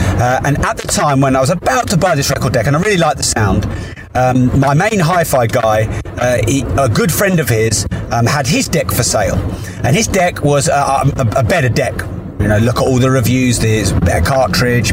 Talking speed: 225 wpm